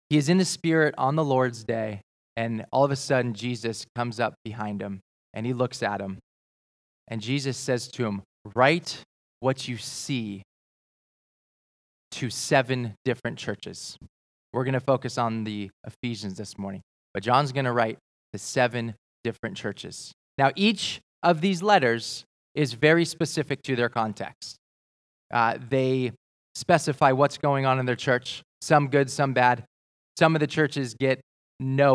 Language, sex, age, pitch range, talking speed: English, male, 20-39, 110-140 Hz, 160 wpm